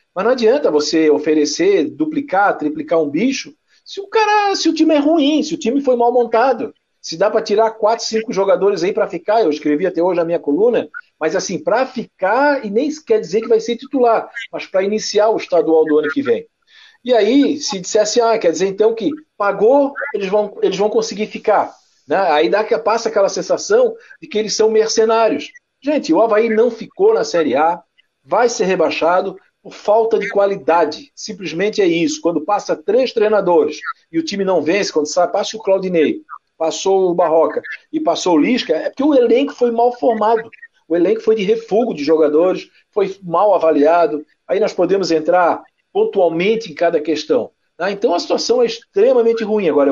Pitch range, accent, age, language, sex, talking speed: 185-285 Hz, Brazilian, 50-69, Portuguese, male, 195 wpm